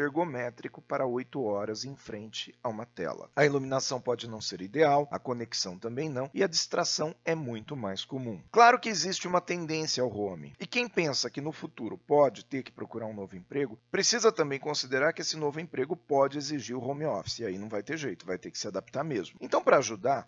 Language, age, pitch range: English, 40-59, 125-175 Hz